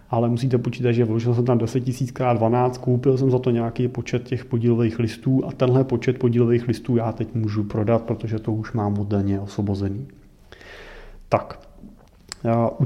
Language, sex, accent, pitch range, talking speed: Czech, male, native, 110-130 Hz, 175 wpm